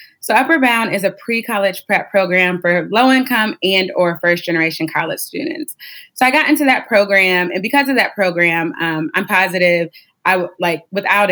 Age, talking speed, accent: 20-39, 175 wpm, American